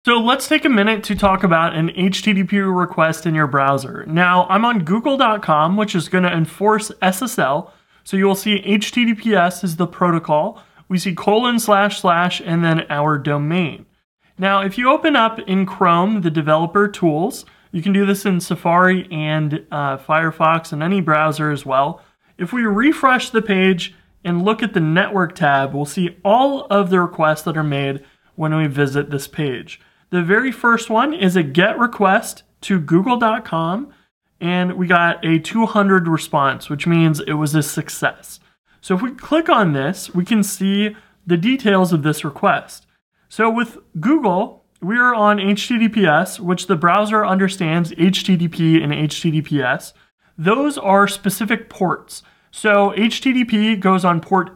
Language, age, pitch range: English, 30-49, 165-210 Hz